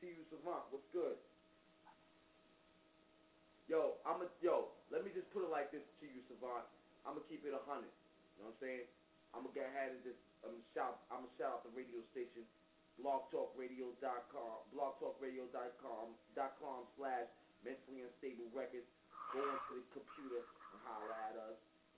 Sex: male